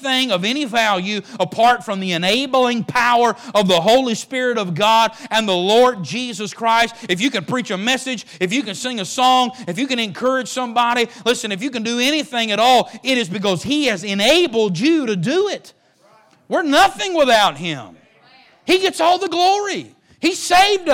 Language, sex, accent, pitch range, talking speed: English, male, American, 220-310 Hz, 185 wpm